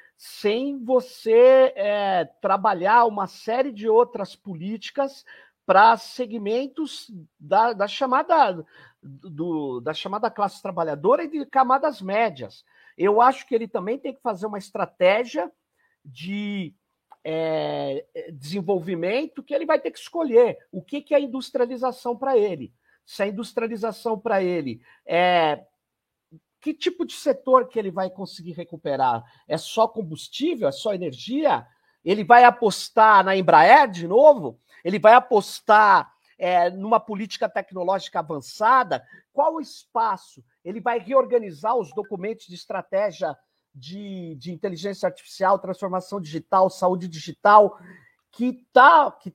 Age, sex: 50-69, male